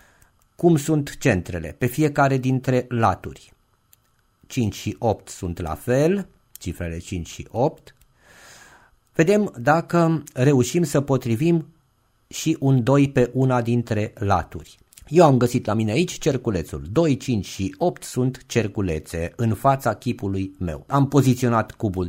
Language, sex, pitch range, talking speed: Romanian, male, 105-145 Hz, 135 wpm